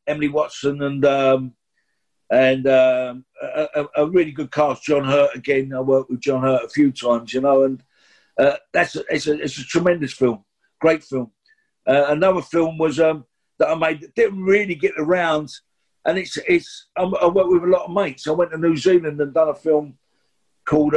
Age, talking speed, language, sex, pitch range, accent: 50-69, 200 wpm, English, male, 130-155 Hz, British